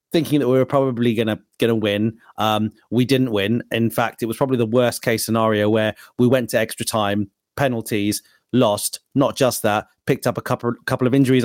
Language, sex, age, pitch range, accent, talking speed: English, male, 30-49, 115-140 Hz, British, 205 wpm